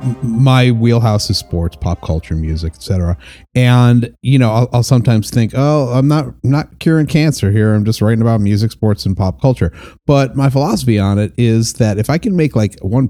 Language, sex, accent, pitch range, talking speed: English, male, American, 95-125 Hz, 205 wpm